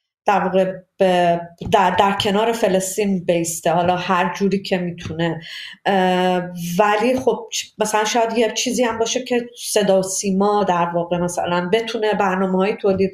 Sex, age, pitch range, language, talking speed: female, 30-49, 190-225 Hz, Persian, 130 wpm